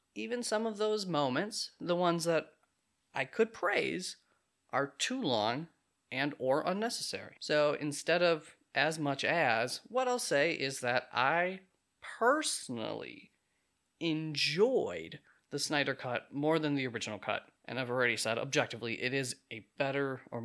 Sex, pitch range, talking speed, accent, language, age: male, 125-160 Hz, 145 wpm, American, English, 30-49